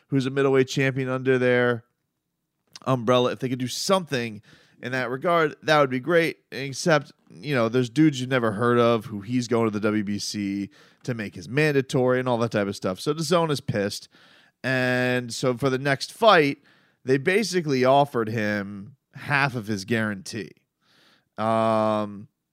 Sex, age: male, 30-49